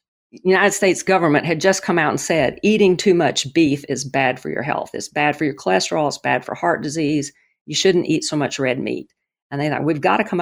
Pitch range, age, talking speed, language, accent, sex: 140-180 Hz, 50-69, 240 wpm, English, American, female